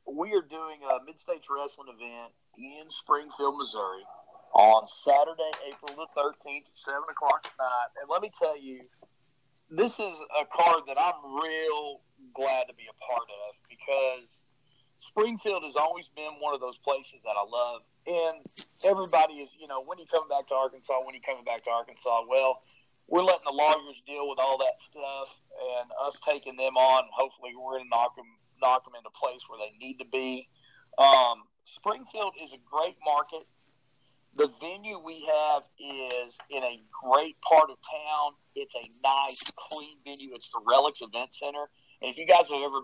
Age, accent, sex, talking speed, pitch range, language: 40-59, American, male, 185 wpm, 130-155 Hz, English